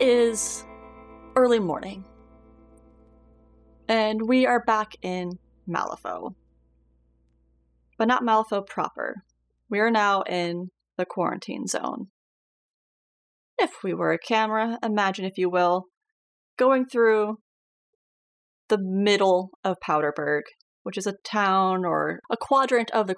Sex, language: female, English